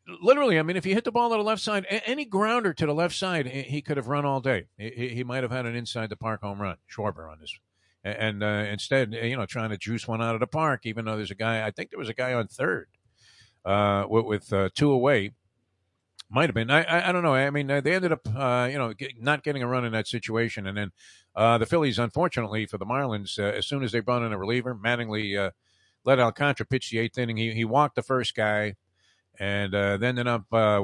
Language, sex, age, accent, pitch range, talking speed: English, male, 50-69, American, 100-130 Hz, 255 wpm